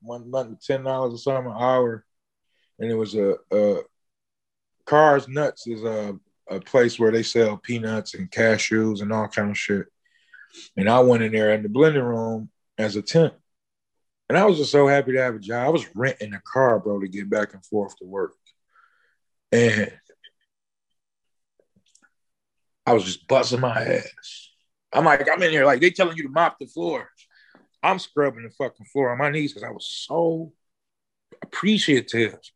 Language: English